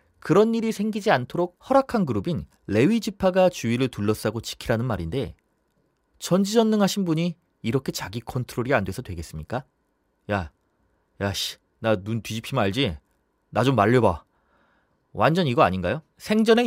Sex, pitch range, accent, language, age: male, 100-155 Hz, native, Korean, 30-49